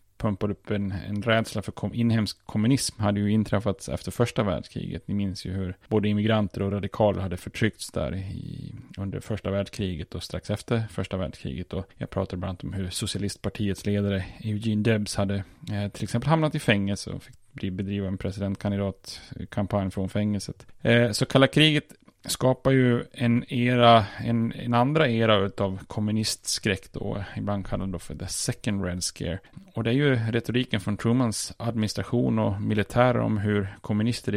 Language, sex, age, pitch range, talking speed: Swedish, male, 10-29, 100-115 Hz, 170 wpm